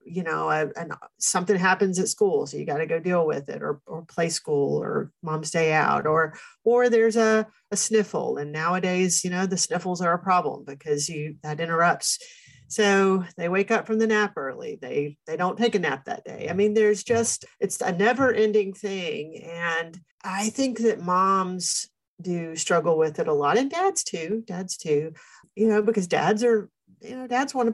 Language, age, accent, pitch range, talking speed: English, 40-59, American, 165-220 Hz, 205 wpm